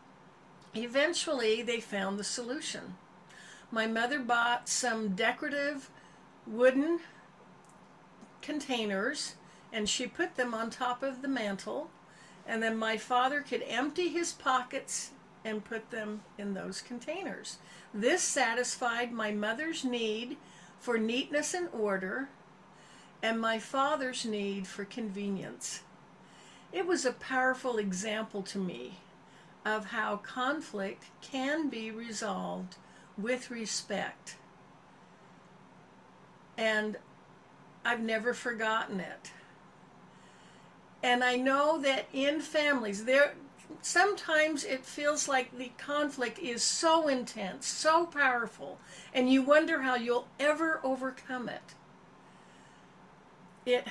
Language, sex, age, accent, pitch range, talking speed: English, female, 60-79, American, 215-275 Hz, 110 wpm